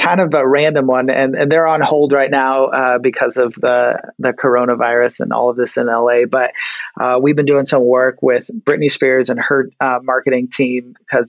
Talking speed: 215 wpm